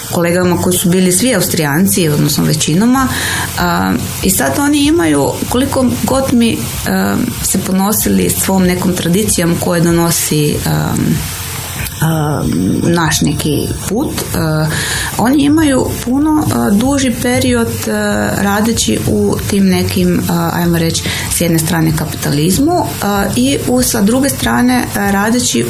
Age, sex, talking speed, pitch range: 20-39, female, 125 wpm, 120-200 Hz